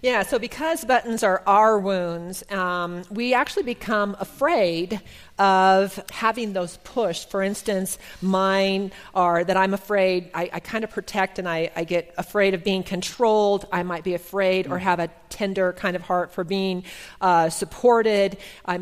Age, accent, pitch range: 40-59, American, 185-230 Hz